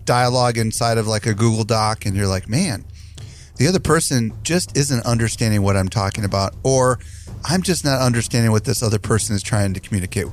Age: 30-49